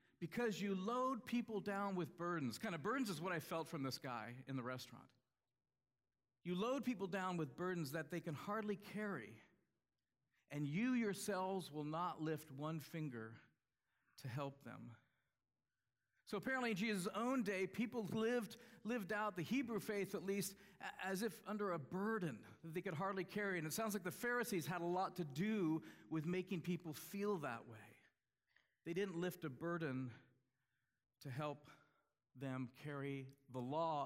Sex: male